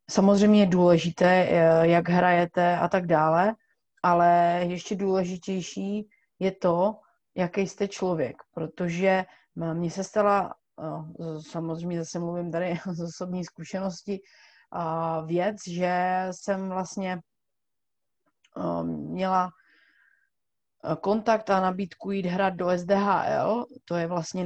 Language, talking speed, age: Czech, 105 wpm, 30-49